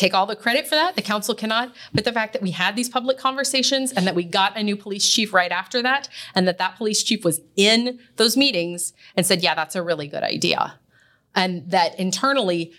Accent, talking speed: American, 230 wpm